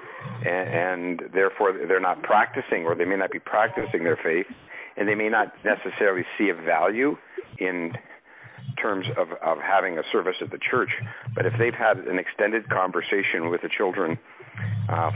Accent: American